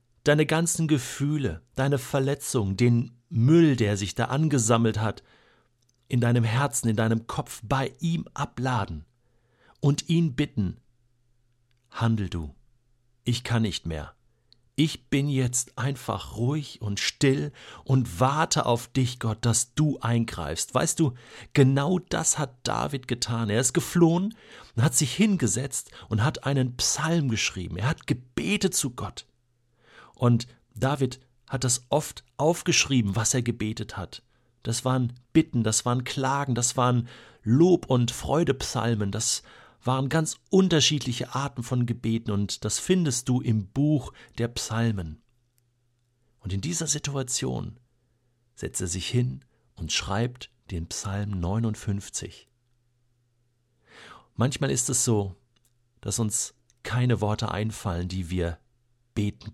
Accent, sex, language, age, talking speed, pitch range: German, male, German, 50-69, 130 wpm, 115-135 Hz